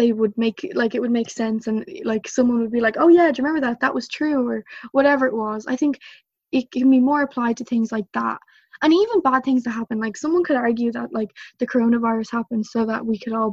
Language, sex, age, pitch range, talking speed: English, female, 10-29, 230-260 Hz, 255 wpm